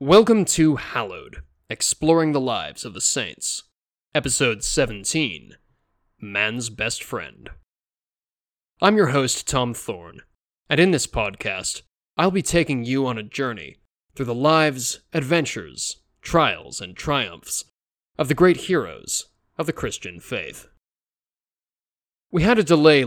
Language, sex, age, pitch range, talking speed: English, male, 20-39, 105-155 Hz, 125 wpm